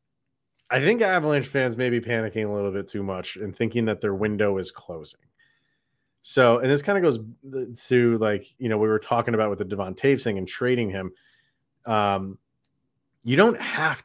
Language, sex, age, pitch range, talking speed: English, male, 30-49, 110-135 Hz, 190 wpm